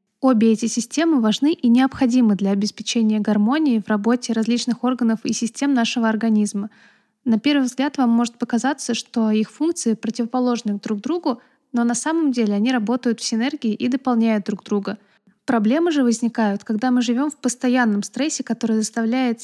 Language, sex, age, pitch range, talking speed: Russian, female, 20-39, 215-250 Hz, 160 wpm